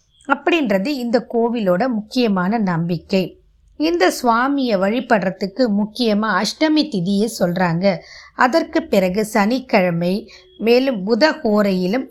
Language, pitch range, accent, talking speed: Tamil, 185-255 Hz, native, 85 wpm